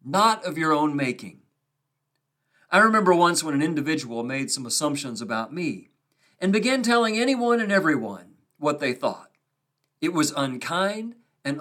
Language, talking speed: English, 150 wpm